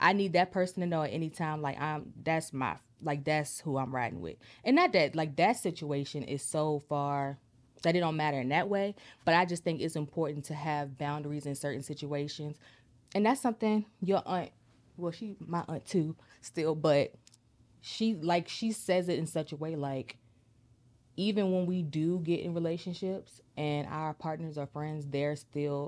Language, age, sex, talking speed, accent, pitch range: English, 20-39, female, 190 wpm, American, 140-170 Hz